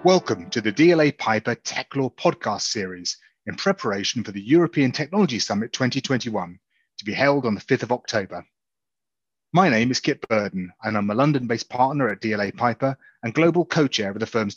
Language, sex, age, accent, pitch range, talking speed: English, male, 30-49, British, 115-140 Hz, 180 wpm